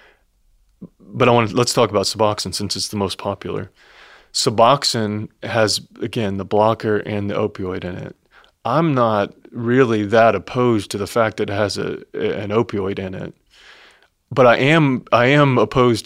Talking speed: 170 wpm